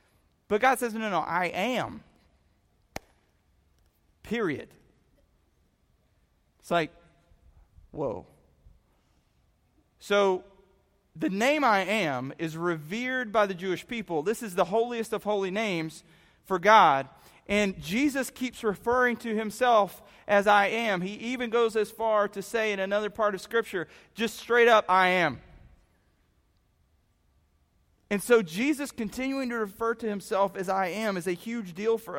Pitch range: 165-230 Hz